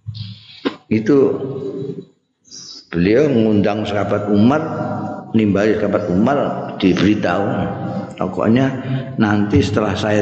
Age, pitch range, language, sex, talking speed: 50-69, 110-155 Hz, Indonesian, male, 75 wpm